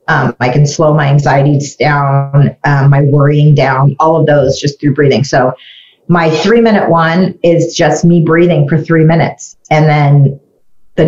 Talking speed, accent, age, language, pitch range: 170 wpm, American, 40-59, English, 150-175 Hz